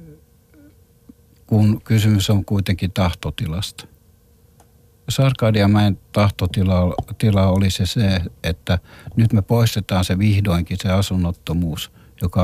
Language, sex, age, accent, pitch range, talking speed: Finnish, male, 60-79, native, 95-110 Hz, 90 wpm